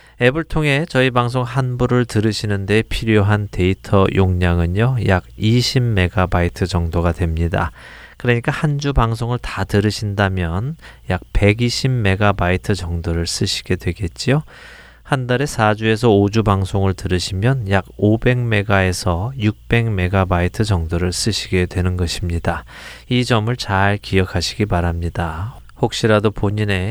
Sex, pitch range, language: male, 95-120 Hz, Korean